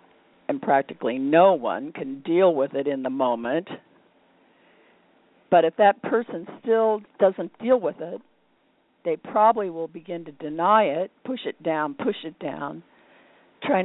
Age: 50-69